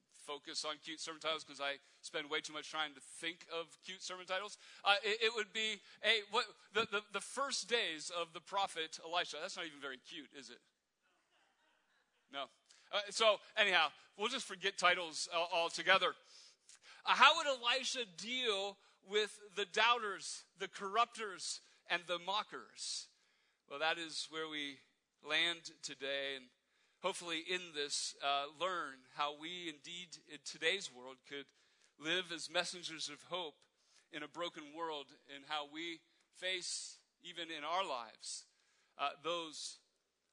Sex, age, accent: male, 40-59, American